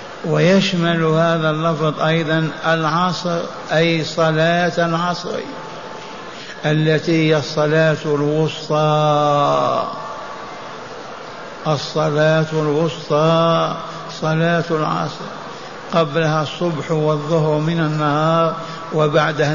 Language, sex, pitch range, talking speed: Arabic, male, 150-170 Hz, 70 wpm